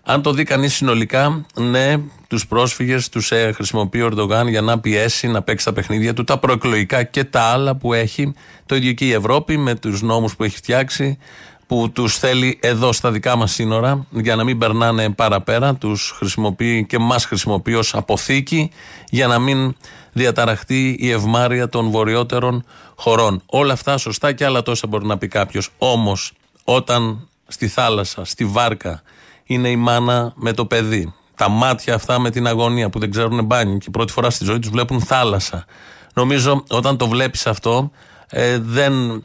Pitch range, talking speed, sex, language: 110-130 Hz, 175 wpm, male, Greek